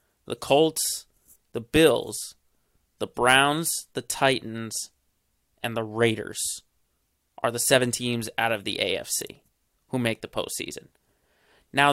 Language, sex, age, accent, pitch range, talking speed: English, male, 30-49, American, 120-155 Hz, 120 wpm